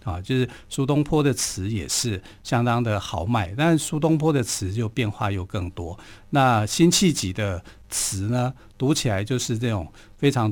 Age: 50-69